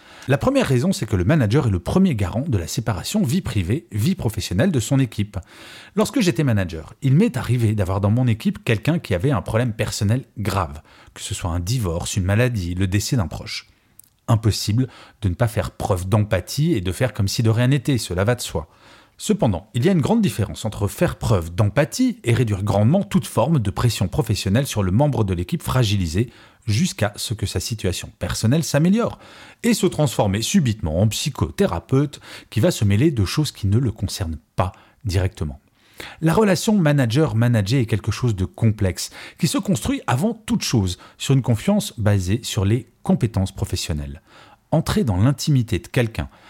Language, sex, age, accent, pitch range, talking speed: French, male, 40-59, French, 100-135 Hz, 185 wpm